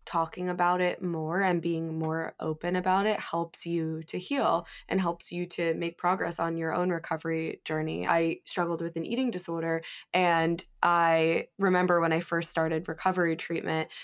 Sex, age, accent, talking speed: female, 20-39, American, 170 wpm